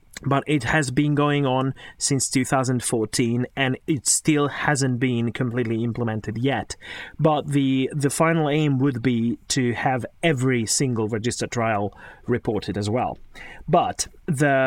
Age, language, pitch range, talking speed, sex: 30-49, English, 115-150 Hz, 140 wpm, male